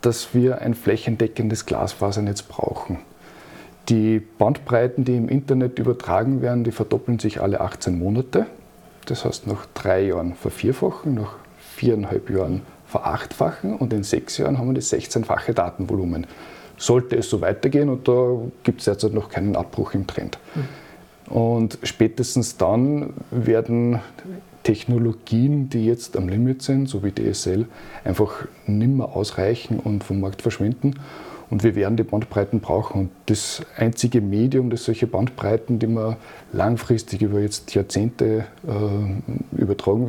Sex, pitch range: male, 105-125 Hz